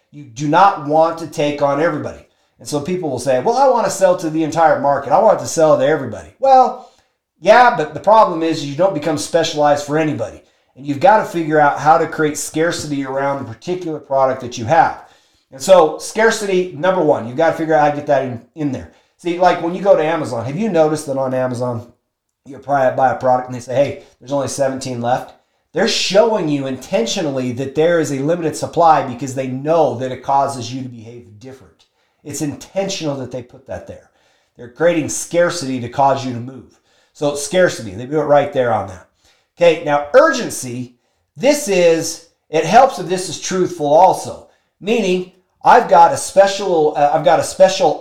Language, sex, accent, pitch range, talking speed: English, male, American, 130-170 Hz, 205 wpm